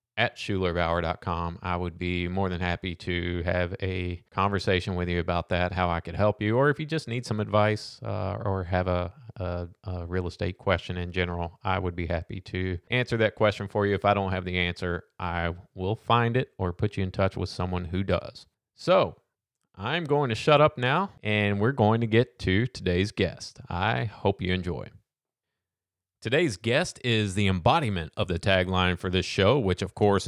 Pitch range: 90-115 Hz